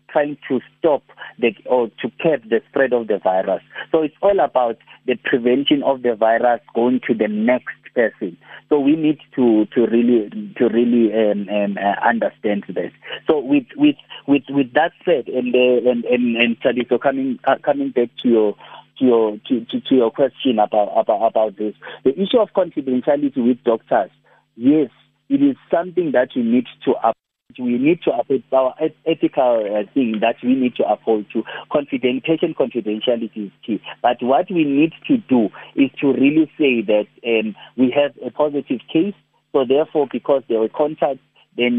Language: English